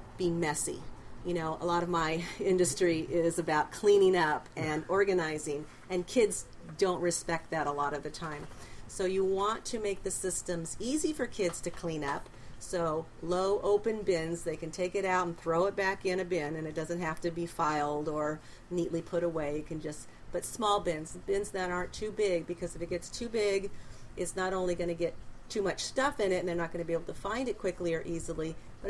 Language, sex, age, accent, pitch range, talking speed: English, female, 40-59, American, 160-190 Hz, 220 wpm